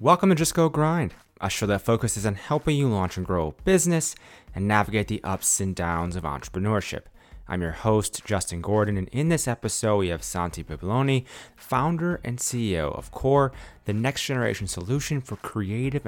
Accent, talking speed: American, 185 wpm